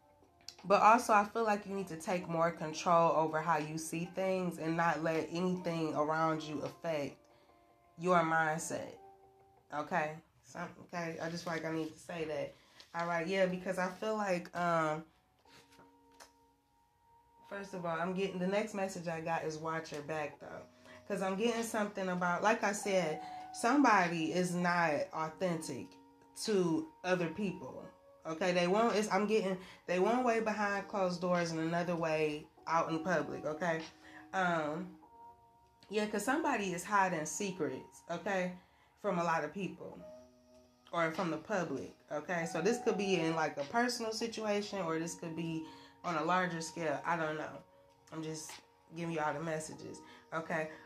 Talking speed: 165 wpm